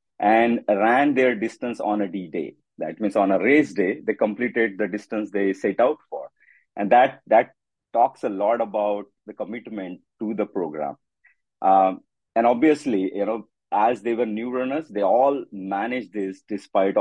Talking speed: 175 wpm